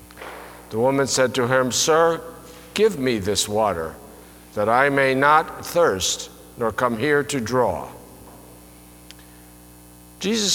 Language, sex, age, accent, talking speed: English, male, 60-79, American, 120 wpm